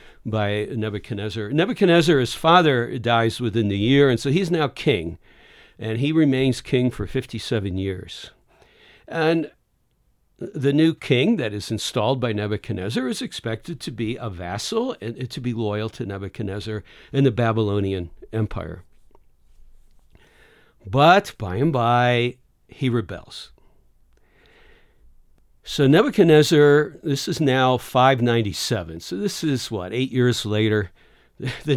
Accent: American